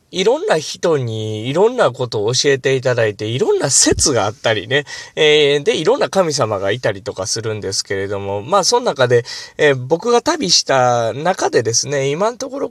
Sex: male